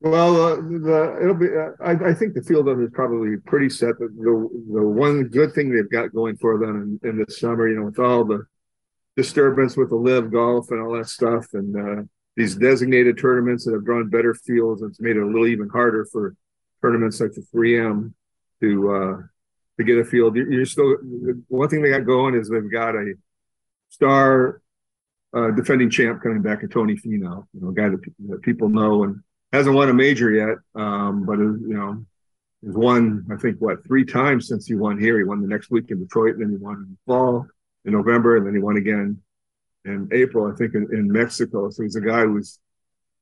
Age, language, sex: 50-69, English, male